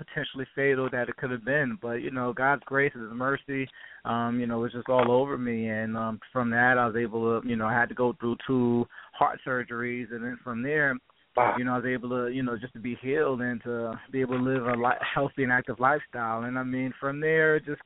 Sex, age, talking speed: male, 20-39, 255 wpm